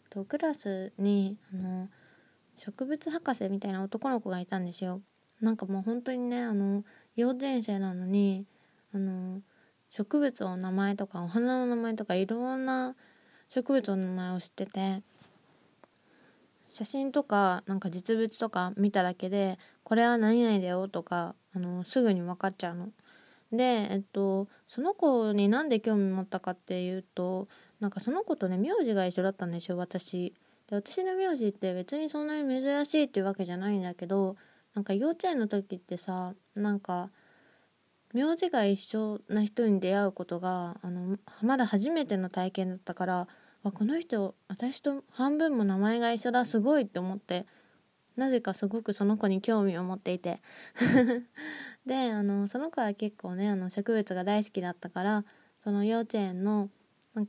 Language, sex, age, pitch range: Japanese, female, 20-39, 185-235 Hz